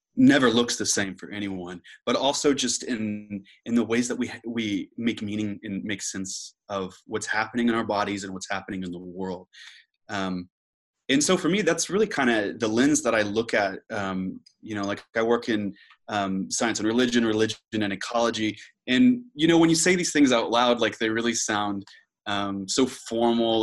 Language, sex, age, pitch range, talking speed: English, male, 20-39, 100-120 Hz, 200 wpm